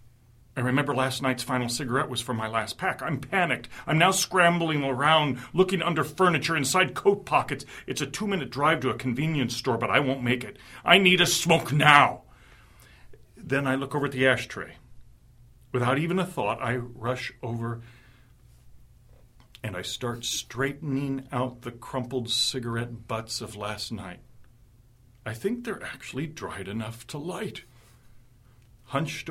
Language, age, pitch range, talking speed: English, 40-59, 115-135 Hz, 155 wpm